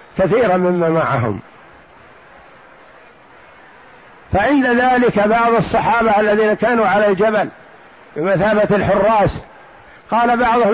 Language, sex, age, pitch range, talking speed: Arabic, male, 60-79, 190-225 Hz, 85 wpm